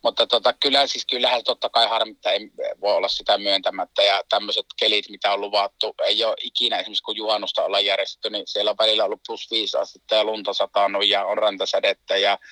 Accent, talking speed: native, 190 wpm